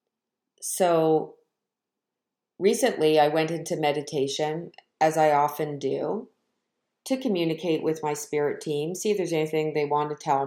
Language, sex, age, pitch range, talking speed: English, female, 50-69, 150-185 Hz, 140 wpm